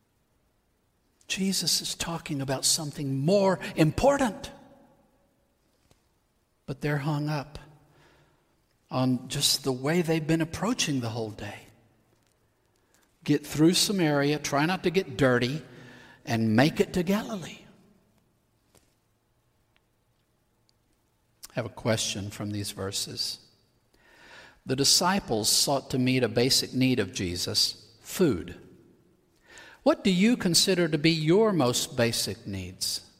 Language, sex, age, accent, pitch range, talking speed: English, male, 60-79, American, 110-160 Hz, 115 wpm